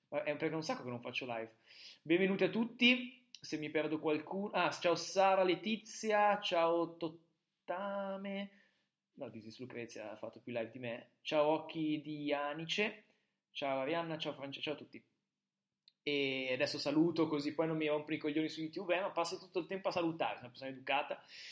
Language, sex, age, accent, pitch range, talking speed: Italian, male, 20-39, native, 130-170 Hz, 180 wpm